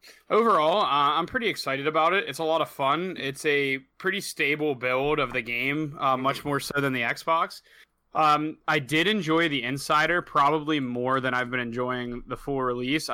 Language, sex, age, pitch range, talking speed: English, male, 20-39, 135-160 Hz, 190 wpm